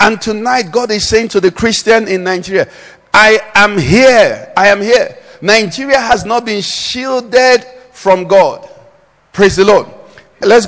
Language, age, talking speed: English, 50-69, 150 wpm